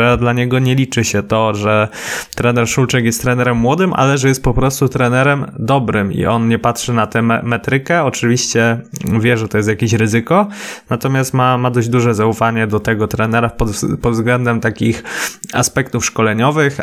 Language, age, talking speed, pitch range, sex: Polish, 20-39, 175 wpm, 115-135 Hz, male